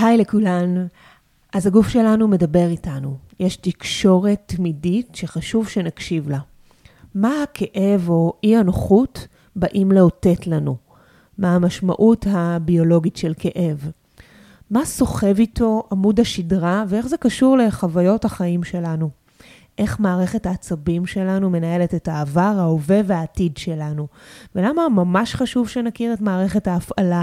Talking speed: 120 wpm